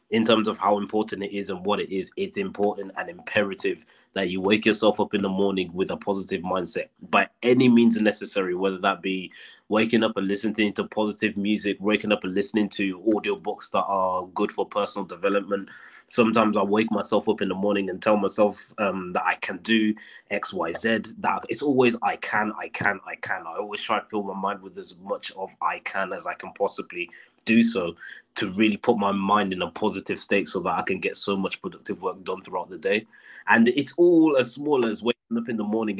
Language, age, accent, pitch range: English, 20-39, British, 100-120 Hz